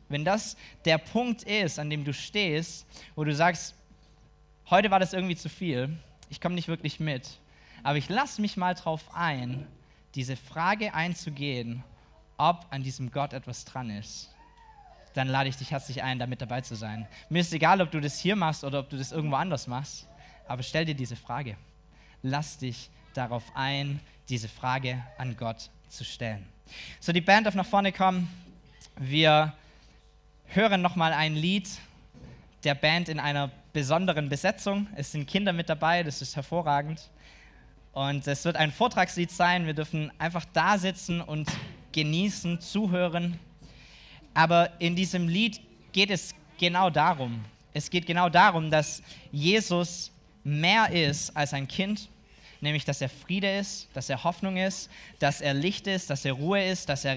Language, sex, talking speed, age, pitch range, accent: German, male, 165 wpm, 20-39, 140-180 Hz, German